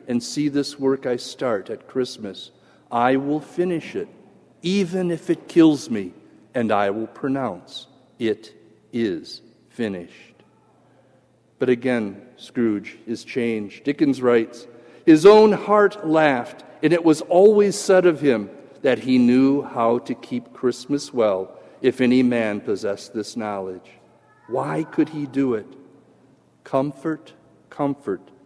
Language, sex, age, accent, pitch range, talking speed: English, male, 50-69, American, 125-170 Hz, 135 wpm